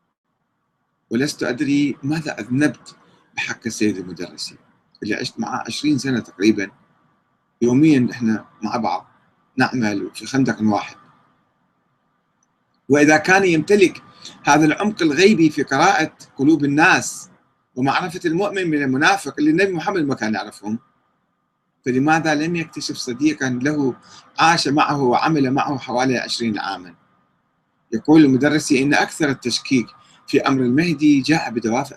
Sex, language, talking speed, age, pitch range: male, Arabic, 120 wpm, 40-59, 115-160 Hz